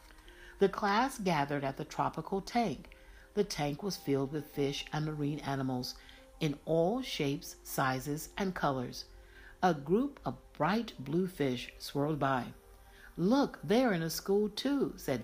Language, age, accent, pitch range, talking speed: English, 60-79, American, 130-210 Hz, 145 wpm